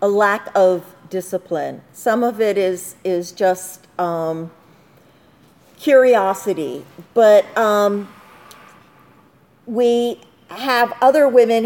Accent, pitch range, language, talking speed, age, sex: American, 185-240 Hz, English, 95 wpm, 50-69, female